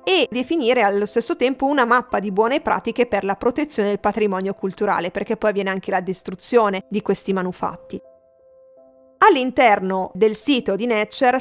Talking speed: 160 wpm